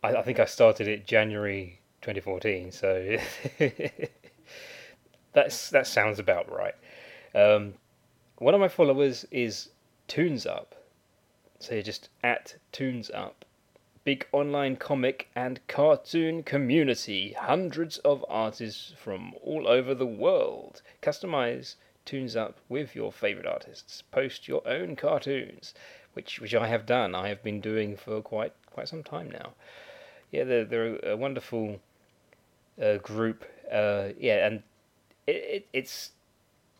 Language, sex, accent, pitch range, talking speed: English, male, British, 105-135 Hz, 130 wpm